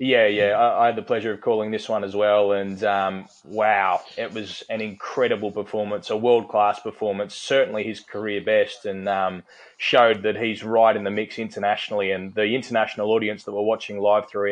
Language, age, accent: English, 20-39, Australian